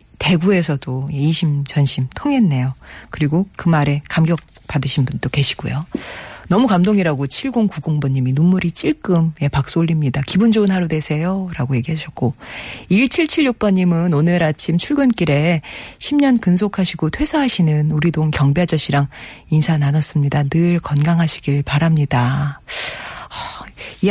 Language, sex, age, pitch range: Korean, female, 40-59, 145-210 Hz